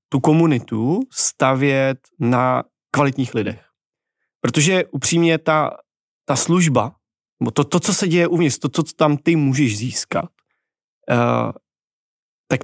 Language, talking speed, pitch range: Czech, 115 wpm, 120-145 Hz